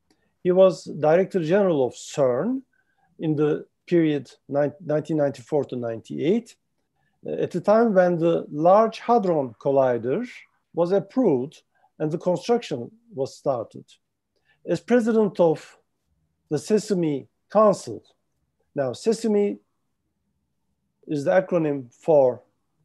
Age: 50-69